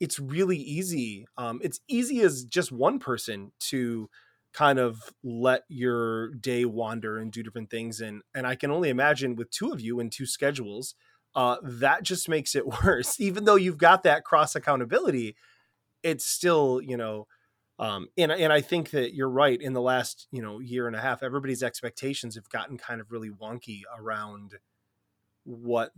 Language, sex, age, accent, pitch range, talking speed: English, male, 20-39, American, 115-150 Hz, 180 wpm